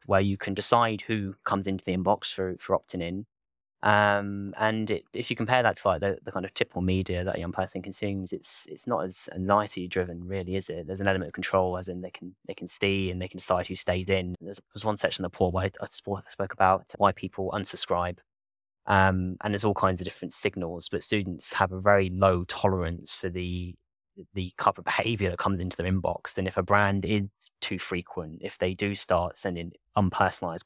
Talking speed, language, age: 225 wpm, English, 20-39